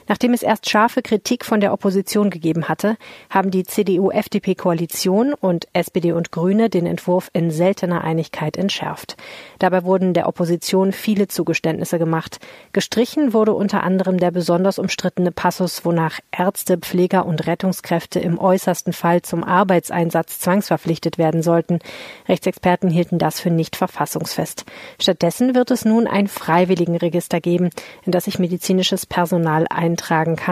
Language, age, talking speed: German, 40-59, 140 wpm